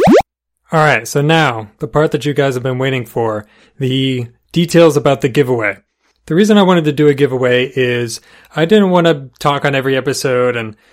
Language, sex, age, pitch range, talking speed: English, male, 30-49, 125-150 Hz, 200 wpm